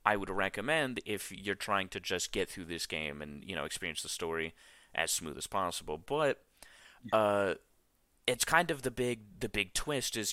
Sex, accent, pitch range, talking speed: male, American, 90-120 Hz, 190 wpm